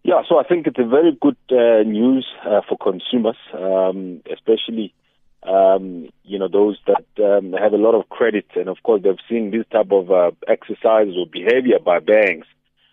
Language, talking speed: English, 185 wpm